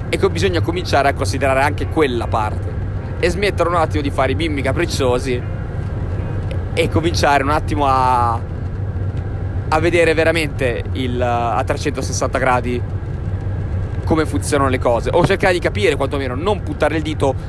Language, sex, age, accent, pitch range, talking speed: Italian, male, 30-49, native, 95-130 Hz, 150 wpm